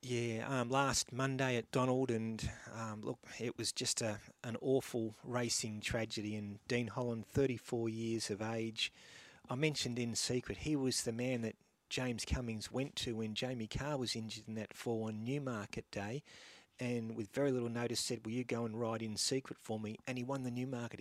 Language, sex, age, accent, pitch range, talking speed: English, male, 30-49, Australian, 110-125 Hz, 195 wpm